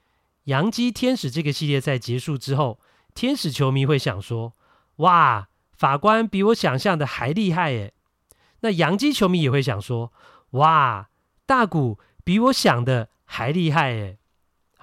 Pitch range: 115-160 Hz